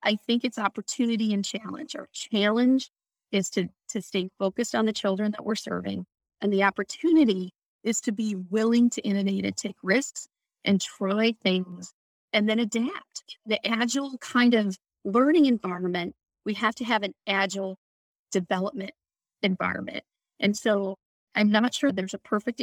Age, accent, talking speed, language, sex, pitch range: 30-49, American, 155 wpm, English, female, 190-240 Hz